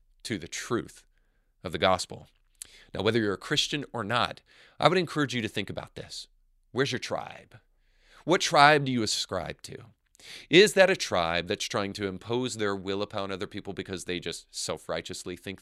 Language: English